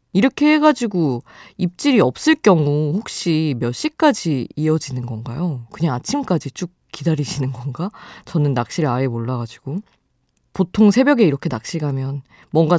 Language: Korean